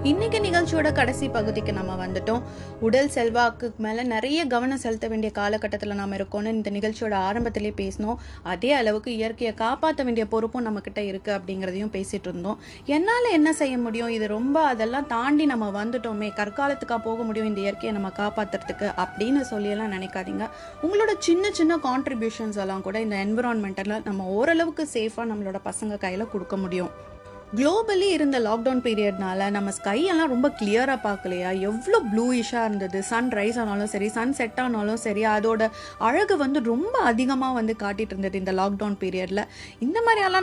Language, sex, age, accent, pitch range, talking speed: Tamil, female, 20-39, native, 200-245 Hz, 140 wpm